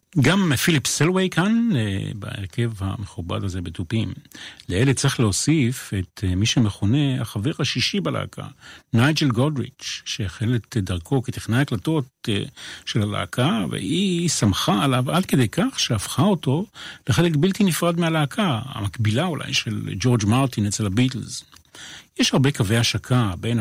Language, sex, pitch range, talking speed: Hebrew, male, 110-145 Hz, 125 wpm